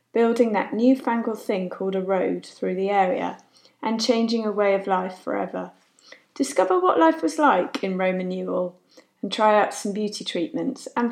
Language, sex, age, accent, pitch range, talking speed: English, female, 30-49, British, 190-255 Hz, 175 wpm